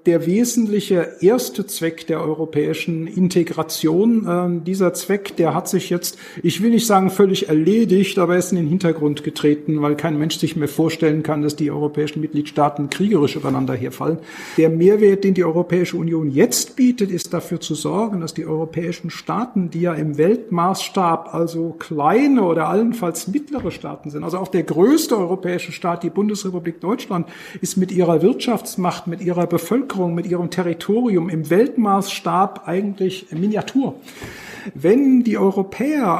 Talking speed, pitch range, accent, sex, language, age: 155 wpm, 160-200 Hz, German, male, German, 50-69